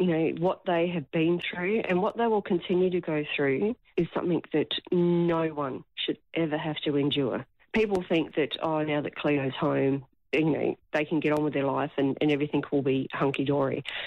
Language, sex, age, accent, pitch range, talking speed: English, female, 40-59, Australian, 140-165 Hz, 205 wpm